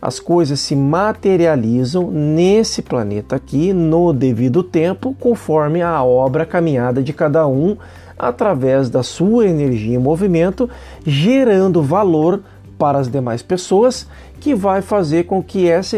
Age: 50-69